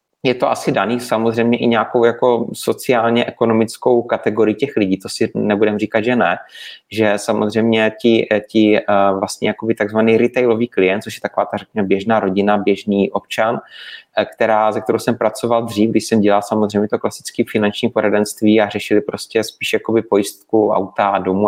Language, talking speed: Czech, 155 wpm